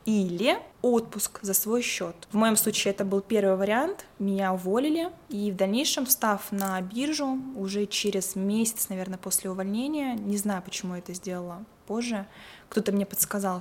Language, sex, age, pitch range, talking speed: Russian, female, 20-39, 190-215 Hz, 160 wpm